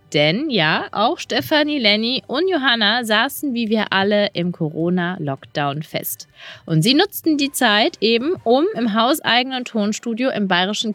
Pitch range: 180-235 Hz